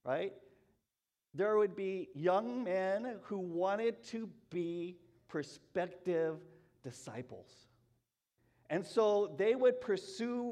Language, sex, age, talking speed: English, male, 50-69, 95 wpm